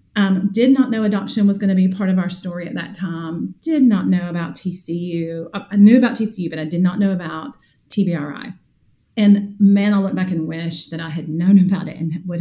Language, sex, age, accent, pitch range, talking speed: English, female, 30-49, American, 165-200 Hz, 225 wpm